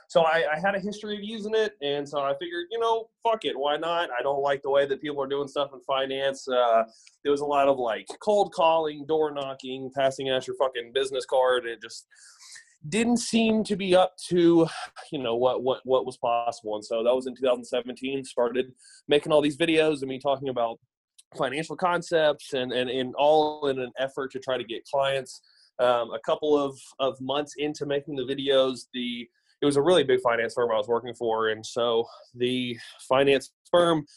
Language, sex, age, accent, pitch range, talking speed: English, male, 20-39, American, 125-155 Hz, 215 wpm